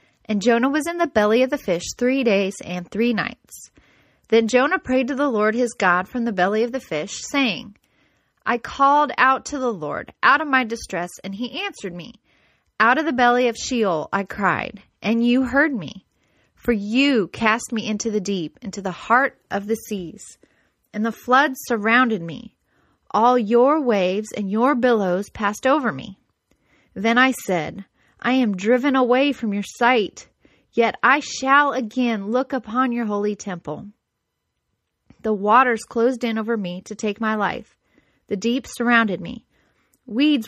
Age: 30-49